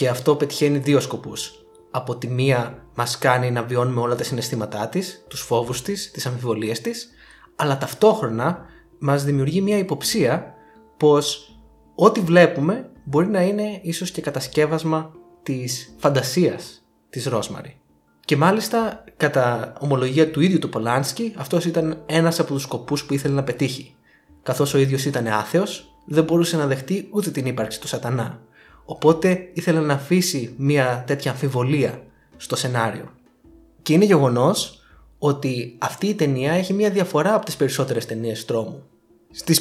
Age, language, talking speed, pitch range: 20-39, Greek, 150 wpm, 125-175 Hz